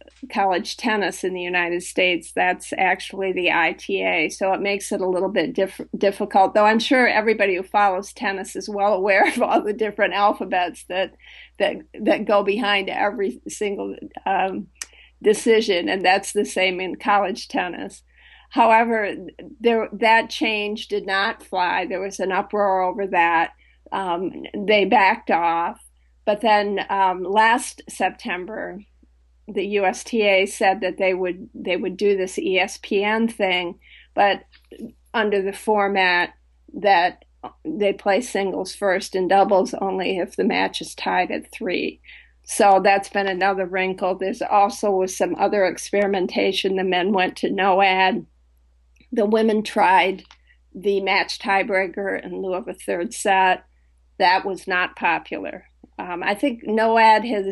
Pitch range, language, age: 185-210 Hz, English, 50-69